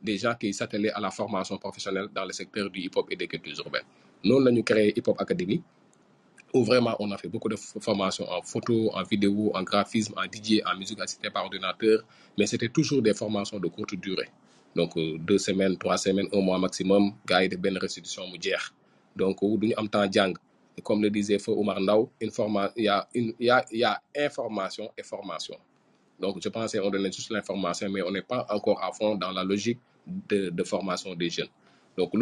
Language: French